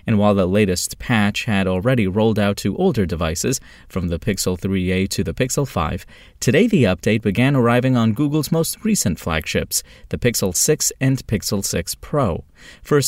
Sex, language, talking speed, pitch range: male, English, 175 wpm, 100-130 Hz